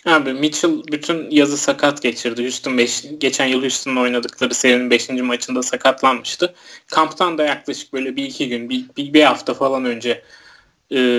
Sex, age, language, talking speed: male, 30-49, Turkish, 155 wpm